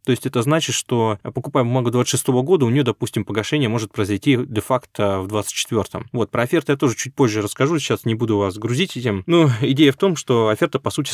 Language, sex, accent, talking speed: Russian, male, native, 215 wpm